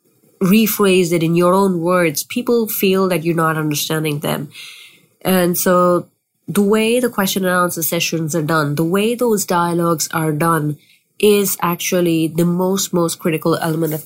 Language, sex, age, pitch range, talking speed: English, female, 30-49, 160-190 Hz, 160 wpm